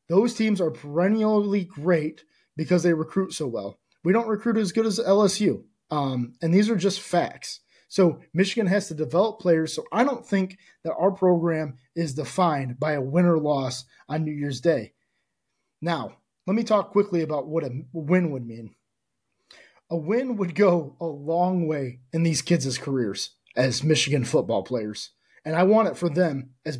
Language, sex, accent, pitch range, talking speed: English, male, American, 145-175 Hz, 180 wpm